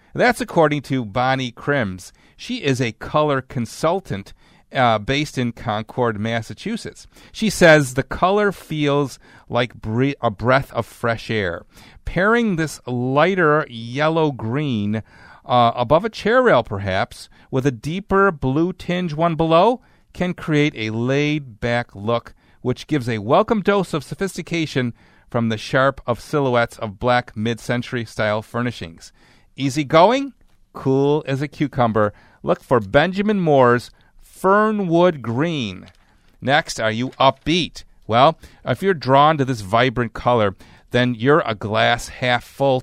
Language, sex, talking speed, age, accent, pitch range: English, male, 130 wpm, 40-59, American, 115-160 Hz